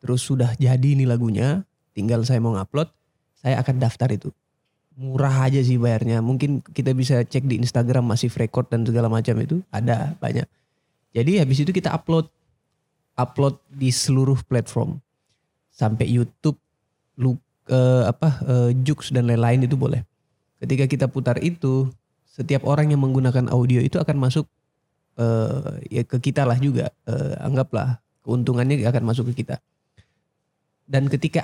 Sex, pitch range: male, 120-145 Hz